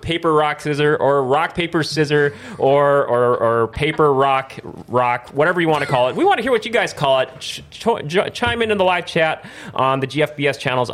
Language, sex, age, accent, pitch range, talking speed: English, male, 30-49, American, 130-185 Hz, 220 wpm